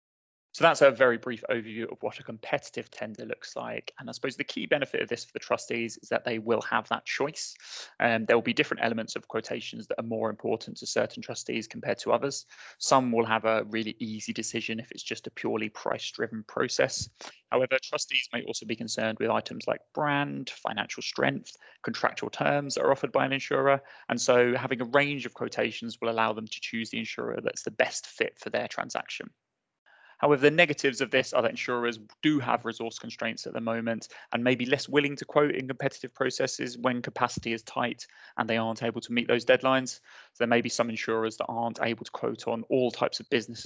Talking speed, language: 215 wpm, English